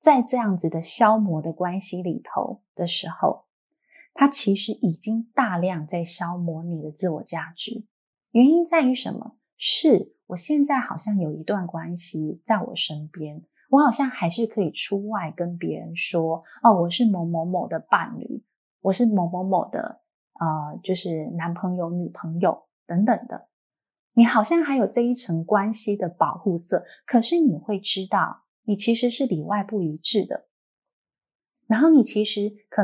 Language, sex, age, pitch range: Chinese, female, 20-39, 175-240 Hz